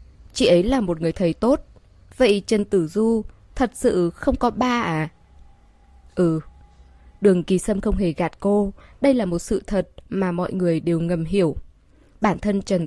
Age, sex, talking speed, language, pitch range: 20-39, female, 180 wpm, Vietnamese, 170-235 Hz